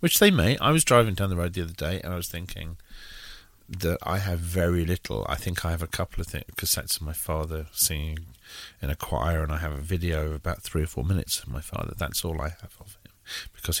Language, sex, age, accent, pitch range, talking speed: English, male, 40-59, British, 85-100 Hz, 250 wpm